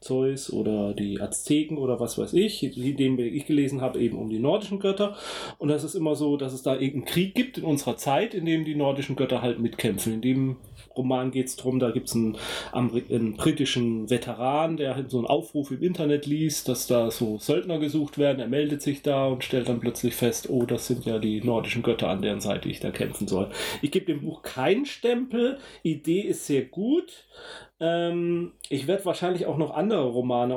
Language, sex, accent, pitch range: German, male, German, 125-165 Hz